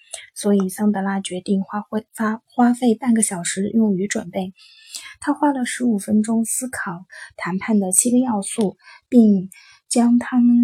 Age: 20-39